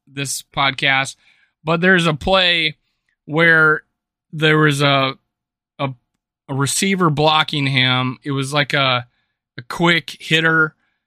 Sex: male